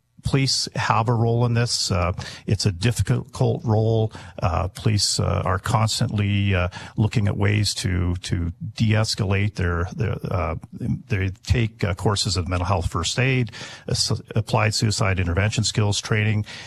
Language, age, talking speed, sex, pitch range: English, 50-69, 145 wpm, male, 100-120 Hz